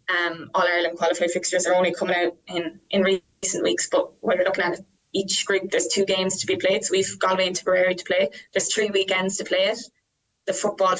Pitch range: 175-195 Hz